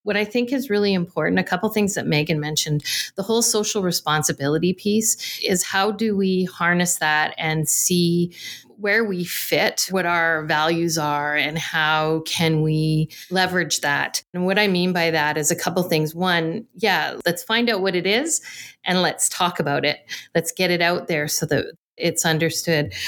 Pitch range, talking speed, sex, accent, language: 155-185 Hz, 180 wpm, female, American, English